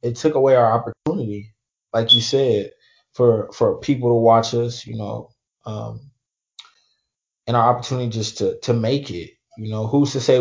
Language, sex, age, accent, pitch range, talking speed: English, male, 20-39, American, 105-125 Hz, 175 wpm